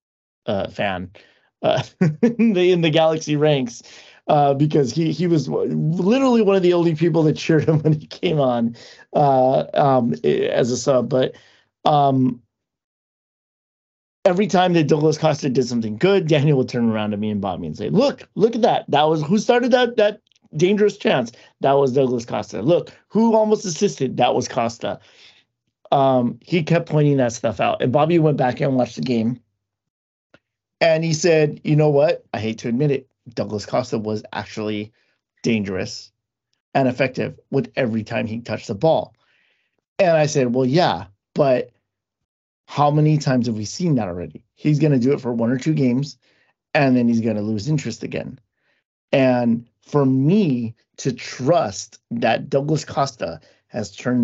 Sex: male